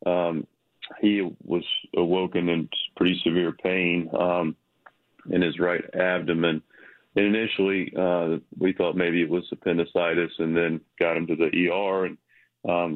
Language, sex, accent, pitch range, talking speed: English, male, American, 85-95 Hz, 145 wpm